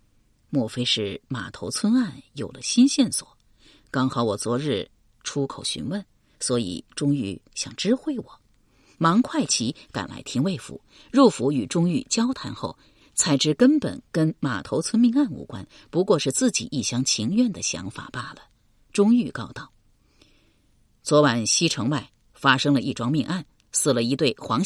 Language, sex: Chinese, female